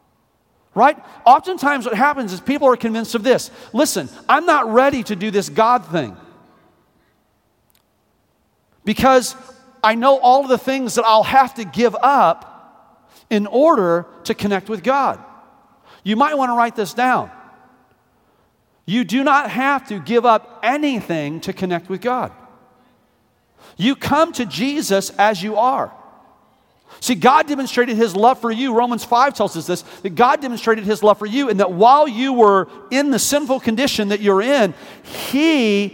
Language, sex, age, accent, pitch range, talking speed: English, male, 40-59, American, 210-265 Hz, 160 wpm